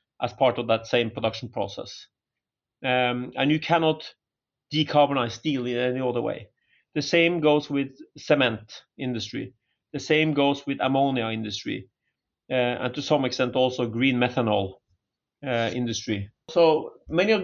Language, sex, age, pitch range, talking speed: English, male, 40-59, 120-145 Hz, 145 wpm